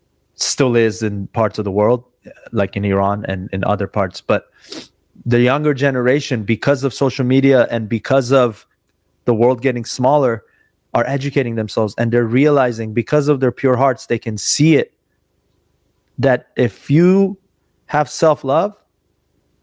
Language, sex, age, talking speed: English, male, 30-49, 150 wpm